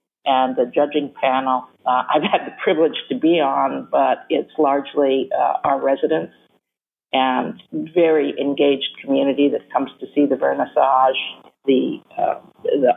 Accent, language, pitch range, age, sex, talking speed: American, English, 140-170 Hz, 50-69, female, 145 wpm